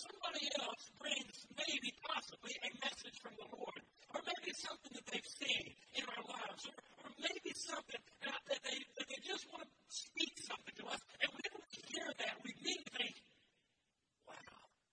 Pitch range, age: 255-330 Hz, 50-69